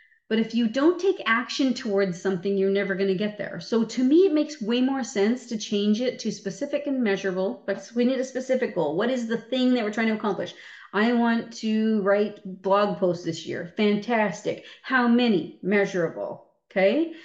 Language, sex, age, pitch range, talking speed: English, female, 40-59, 180-235 Hz, 200 wpm